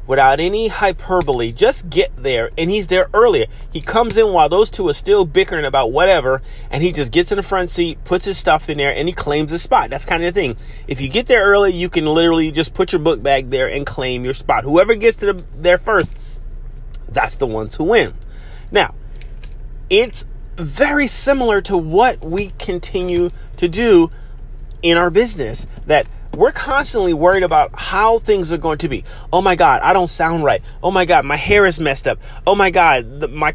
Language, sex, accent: English, male, American